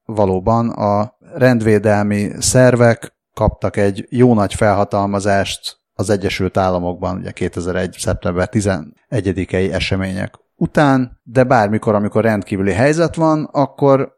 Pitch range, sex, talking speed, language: 100-125 Hz, male, 105 wpm, Hungarian